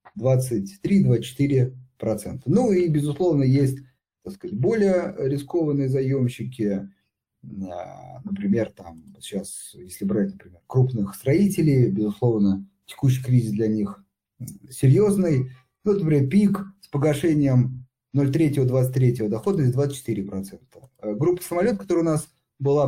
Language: Russian